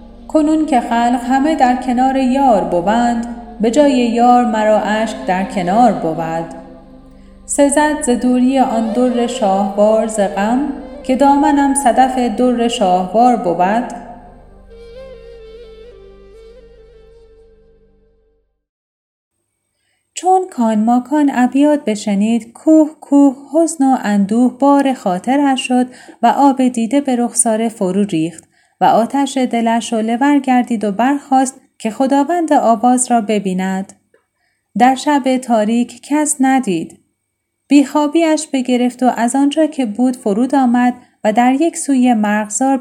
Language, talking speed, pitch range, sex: Persian, 115 wpm, 230-280 Hz, female